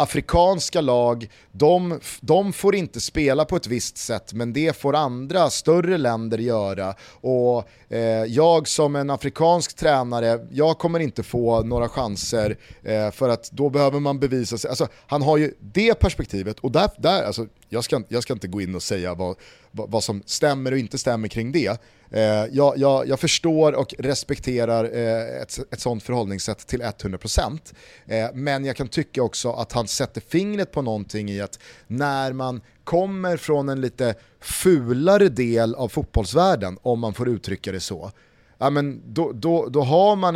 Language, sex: Swedish, male